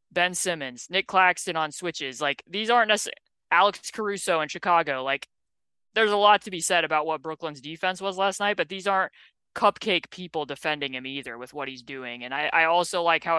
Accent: American